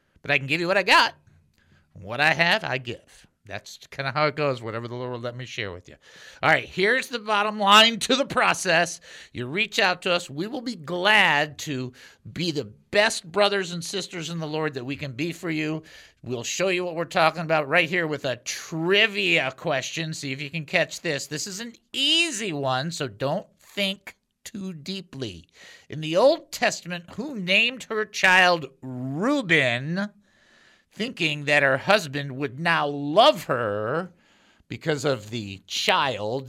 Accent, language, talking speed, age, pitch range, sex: American, English, 185 wpm, 50-69, 135-195 Hz, male